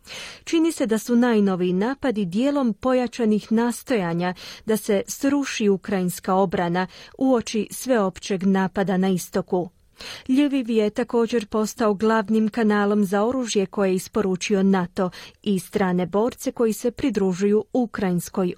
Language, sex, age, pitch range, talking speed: Croatian, female, 30-49, 190-235 Hz, 125 wpm